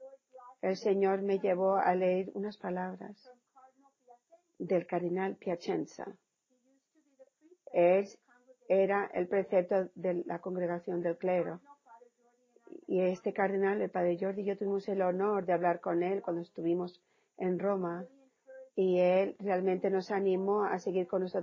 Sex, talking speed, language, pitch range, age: female, 135 wpm, Spanish, 180-245 Hz, 40-59